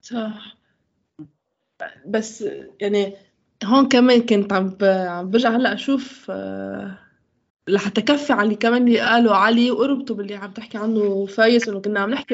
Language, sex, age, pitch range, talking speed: Arabic, female, 20-39, 195-240 Hz, 130 wpm